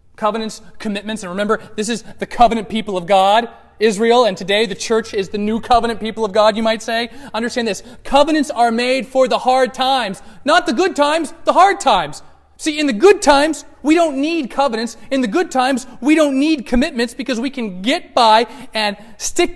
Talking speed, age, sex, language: 200 wpm, 30-49, male, English